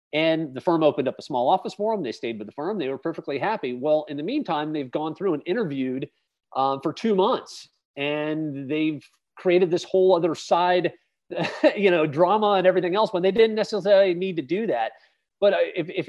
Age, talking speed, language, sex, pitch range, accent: 40-59, 210 wpm, English, male, 145-180 Hz, American